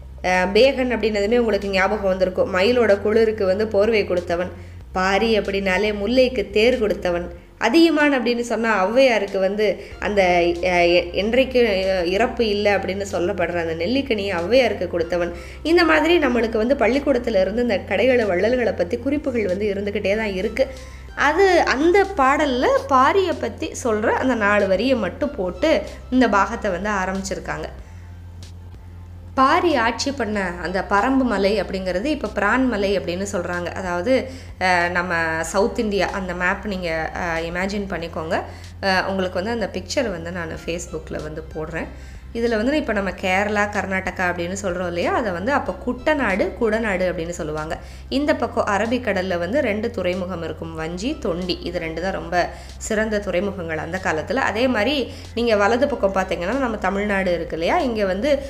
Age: 20-39